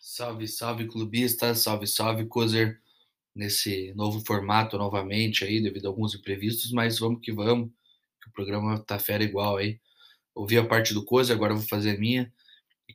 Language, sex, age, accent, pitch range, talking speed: Portuguese, male, 20-39, Brazilian, 105-120 Hz, 170 wpm